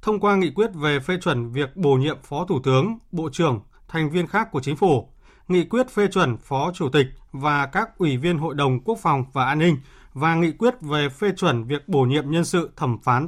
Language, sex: Vietnamese, male